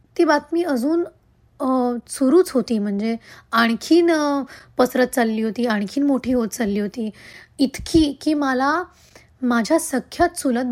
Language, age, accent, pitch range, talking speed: Marathi, 20-39, native, 235-305 Hz, 120 wpm